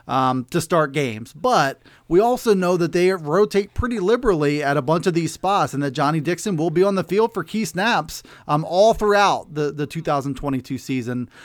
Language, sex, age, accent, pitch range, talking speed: English, male, 30-49, American, 150-205 Hz, 200 wpm